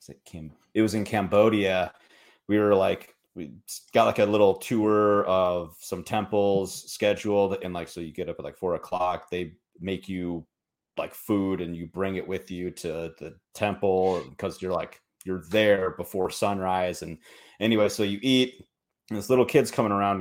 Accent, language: American, English